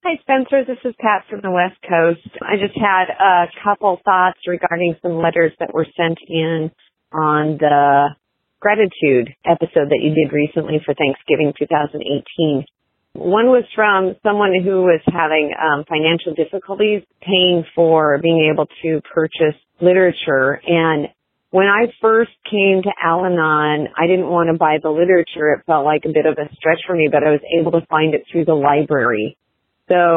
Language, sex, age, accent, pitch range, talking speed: English, female, 40-59, American, 155-185 Hz, 170 wpm